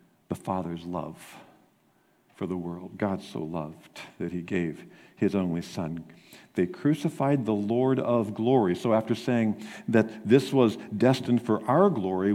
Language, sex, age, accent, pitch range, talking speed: English, male, 50-69, American, 95-135 Hz, 150 wpm